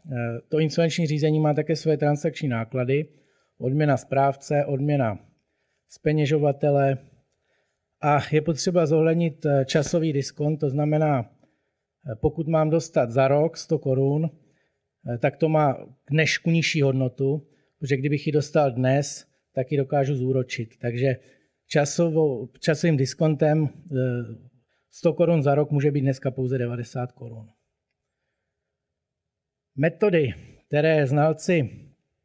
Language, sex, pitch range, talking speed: Czech, male, 135-155 Hz, 110 wpm